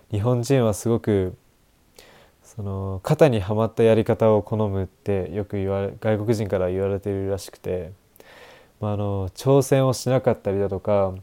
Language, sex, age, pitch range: Japanese, male, 20-39, 100-130 Hz